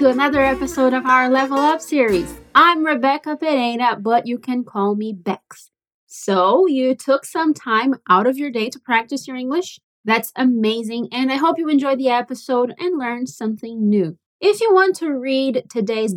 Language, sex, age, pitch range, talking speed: Portuguese, female, 20-39, 235-315 Hz, 180 wpm